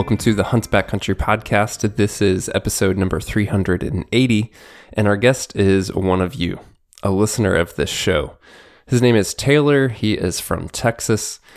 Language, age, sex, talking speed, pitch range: English, 20-39, male, 165 wpm, 95-120 Hz